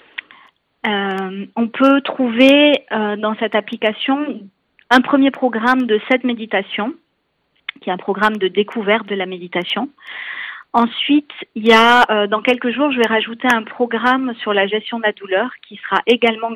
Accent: French